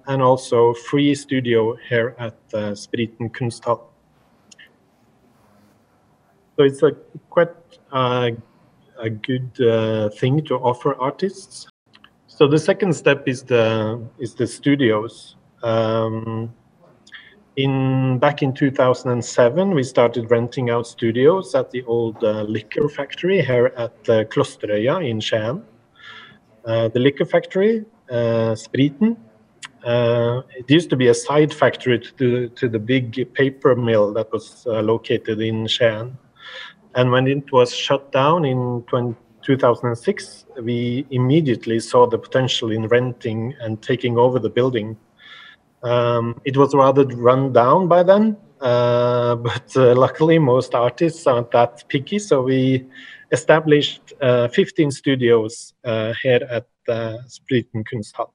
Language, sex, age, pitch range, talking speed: Slovak, male, 40-59, 115-140 Hz, 135 wpm